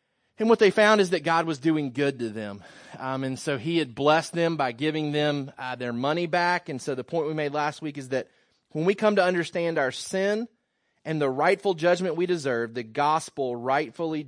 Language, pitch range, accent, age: English, 135-175 Hz, American, 30-49